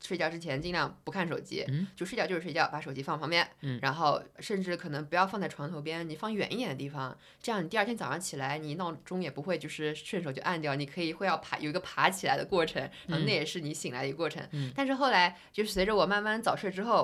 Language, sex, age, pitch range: Chinese, female, 20-39, 155-205 Hz